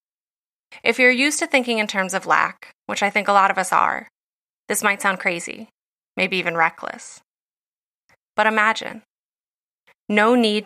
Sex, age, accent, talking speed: female, 20-39, American, 160 wpm